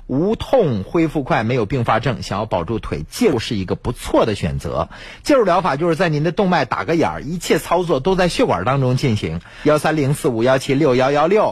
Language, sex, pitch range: Chinese, male, 120-175 Hz